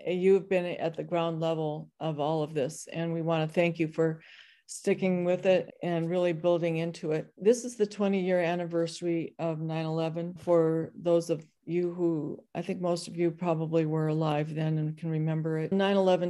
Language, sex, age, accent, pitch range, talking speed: English, female, 50-69, American, 155-170 Hz, 195 wpm